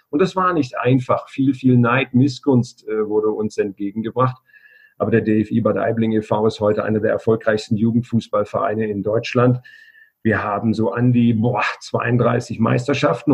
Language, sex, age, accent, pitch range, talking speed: German, male, 40-59, German, 110-130 Hz, 160 wpm